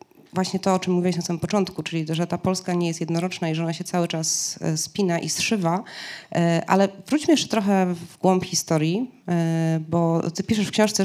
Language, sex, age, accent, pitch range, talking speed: Polish, female, 30-49, native, 160-195 Hz, 195 wpm